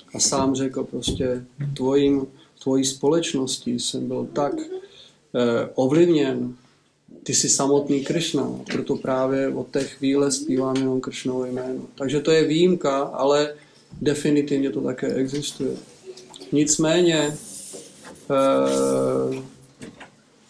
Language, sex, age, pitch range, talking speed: Czech, male, 40-59, 130-150 Hz, 105 wpm